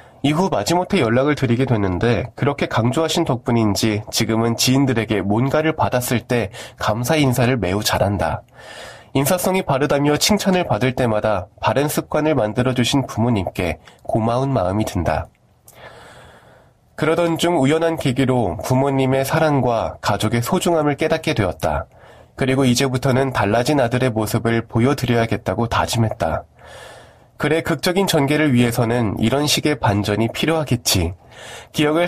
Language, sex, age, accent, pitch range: Korean, male, 20-39, native, 110-155 Hz